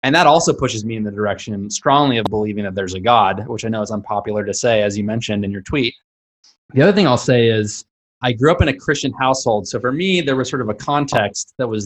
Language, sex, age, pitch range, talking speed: English, male, 20-39, 110-140 Hz, 265 wpm